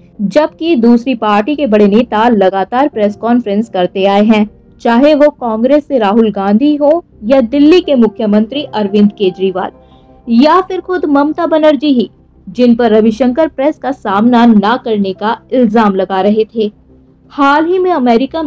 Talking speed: 155 wpm